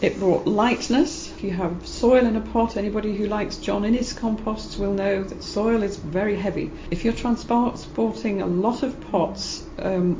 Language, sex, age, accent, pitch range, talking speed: English, female, 40-59, British, 175-220 Hz, 180 wpm